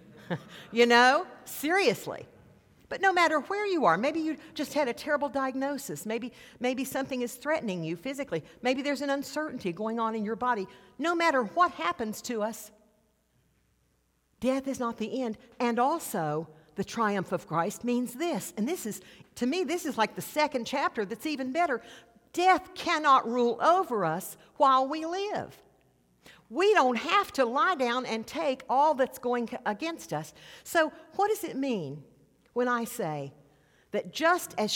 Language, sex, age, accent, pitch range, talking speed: English, female, 50-69, American, 175-280 Hz, 165 wpm